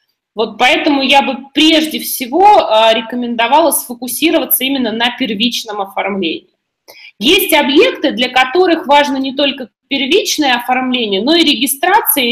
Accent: native